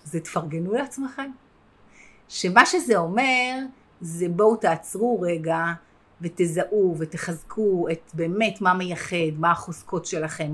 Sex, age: female, 30-49